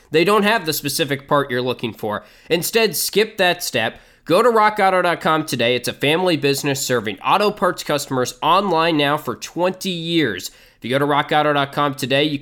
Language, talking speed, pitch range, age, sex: English, 180 wpm, 130-170 Hz, 20-39, male